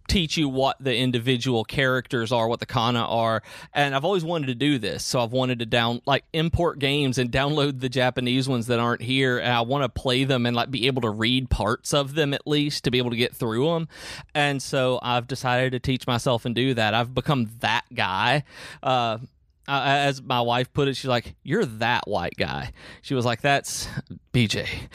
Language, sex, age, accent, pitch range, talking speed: English, male, 30-49, American, 120-140 Hz, 215 wpm